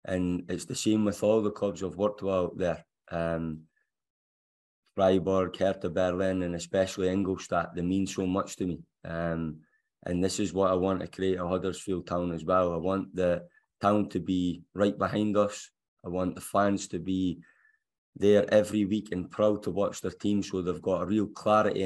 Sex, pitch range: male, 90-100 Hz